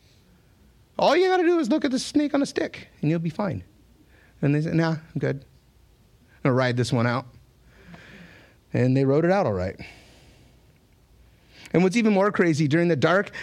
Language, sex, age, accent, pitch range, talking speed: English, male, 30-49, American, 135-195 Hz, 200 wpm